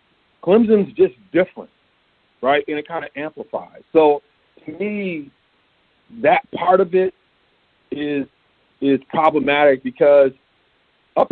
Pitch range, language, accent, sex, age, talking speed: 140-220 Hz, English, American, male, 50-69, 110 wpm